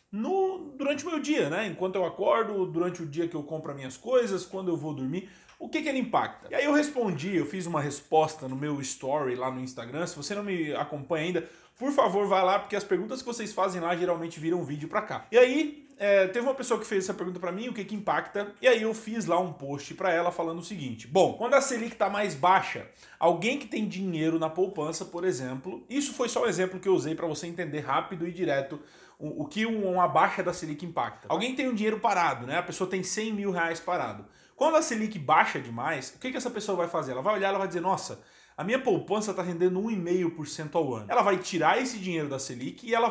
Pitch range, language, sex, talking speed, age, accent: 165-215 Hz, Portuguese, male, 250 wpm, 20-39, Brazilian